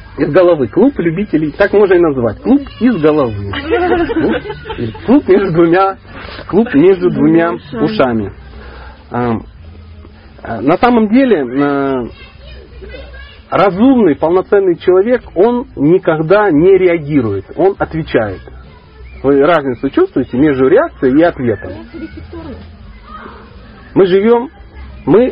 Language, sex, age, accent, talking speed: Russian, male, 40-59, native, 90 wpm